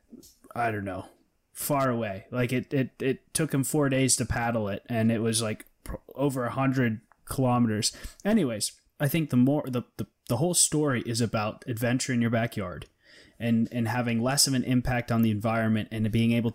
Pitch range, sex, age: 110-130 Hz, male, 20-39